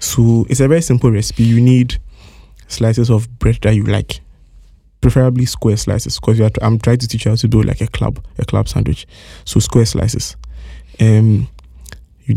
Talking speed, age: 180 wpm, 20-39